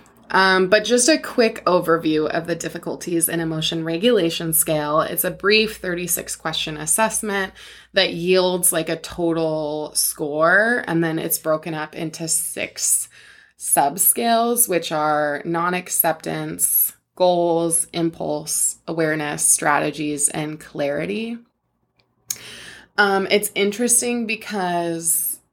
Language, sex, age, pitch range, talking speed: English, female, 20-39, 160-190 Hz, 110 wpm